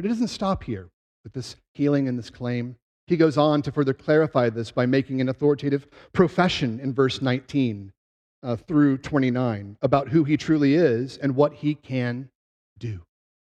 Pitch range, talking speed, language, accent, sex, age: 125-160 Hz, 175 wpm, English, American, male, 40-59